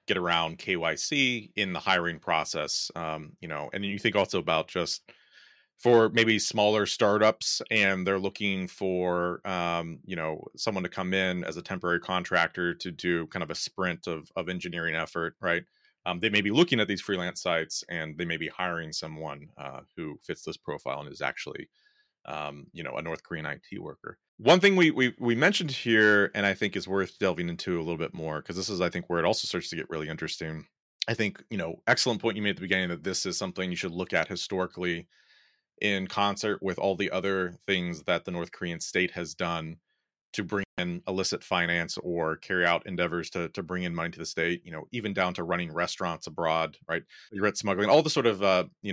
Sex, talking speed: male, 215 wpm